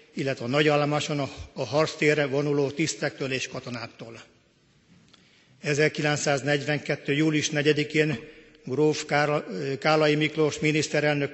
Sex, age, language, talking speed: male, 50-69, Hungarian, 85 wpm